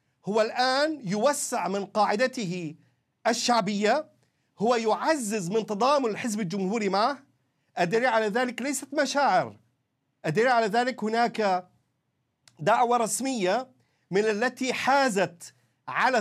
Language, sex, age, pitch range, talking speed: Arabic, male, 50-69, 180-250 Hz, 105 wpm